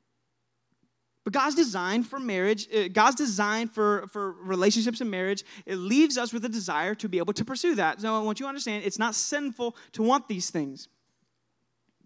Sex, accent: male, American